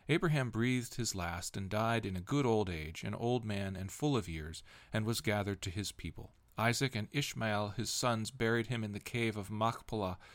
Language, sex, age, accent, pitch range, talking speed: English, male, 40-59, American, 100-120 Hz, 210 wpm